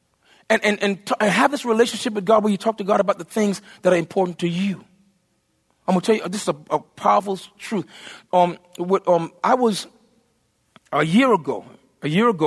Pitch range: 170-220 Hz